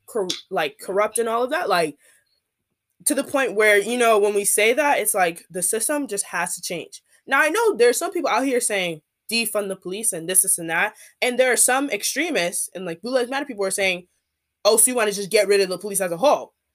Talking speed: 245 wpm